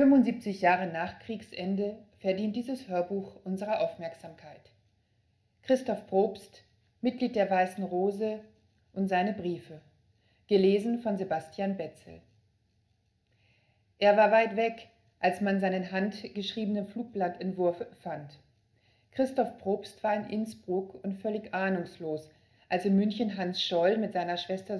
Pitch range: 170-210 Hz